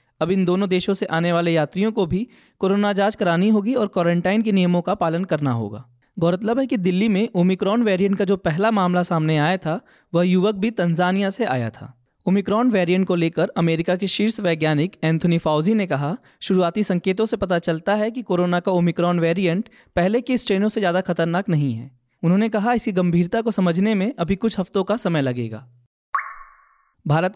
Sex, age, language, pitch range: male, 20-39, Hindi, 165-205 Hz